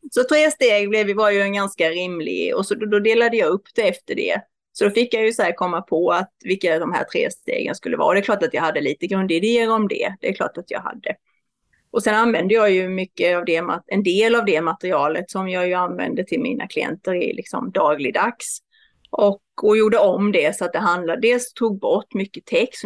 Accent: native